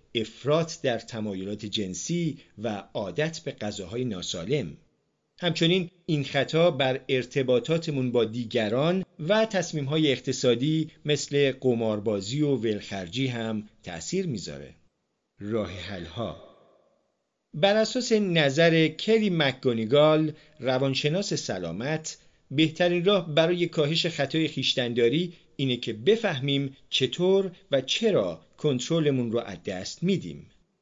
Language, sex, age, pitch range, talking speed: Persian, male, 40-59, 120-170 Hz, 100 wpm